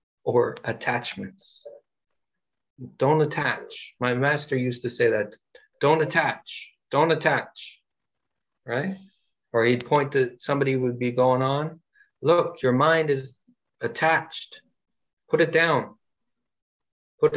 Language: English